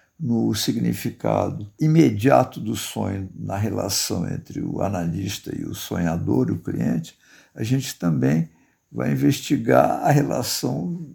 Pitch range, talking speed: 110-165 Hz, 120 wpm